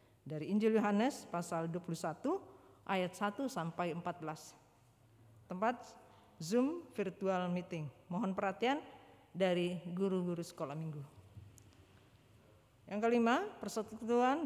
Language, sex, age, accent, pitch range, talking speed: Indonesian, female, 40-59, native, 175-225 Hz, 90 wpm